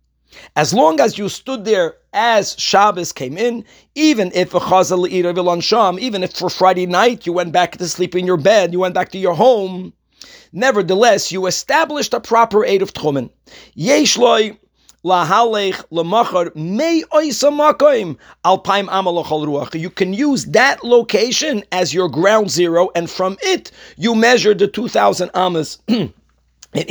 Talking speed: 135 wpm